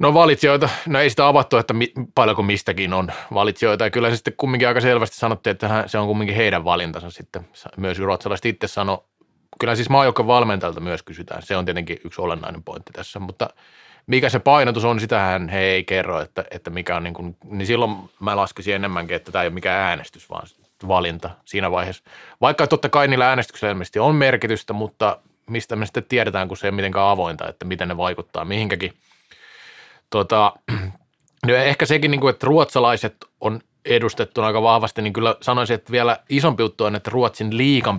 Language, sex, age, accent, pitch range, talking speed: Finnish, male, 30-49, native, 95-120 Hz, 190 wpm